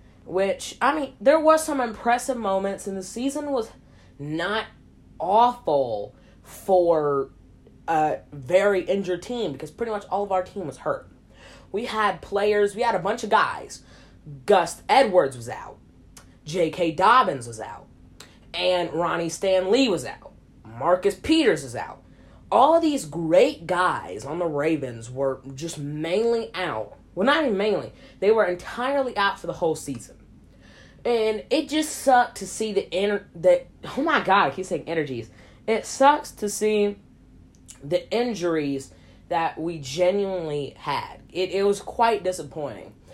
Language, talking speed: English, 155 wpm